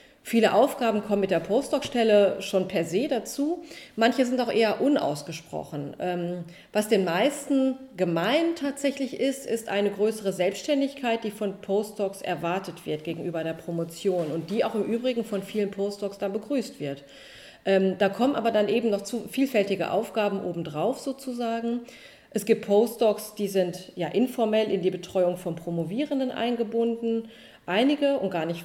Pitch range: 185-250 Hz